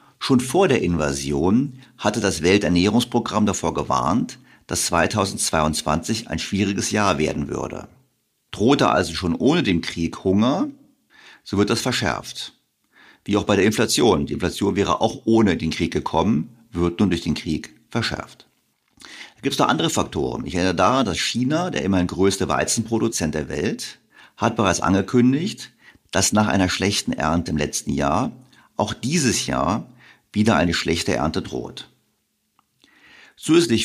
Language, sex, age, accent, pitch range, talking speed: German, male, 50-69, German, 85-115 Hz, 145 wpm